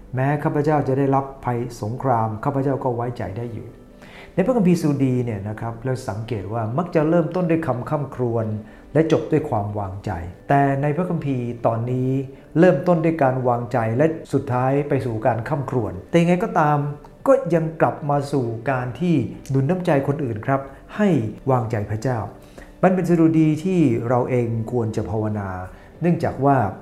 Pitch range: 115-150 Hz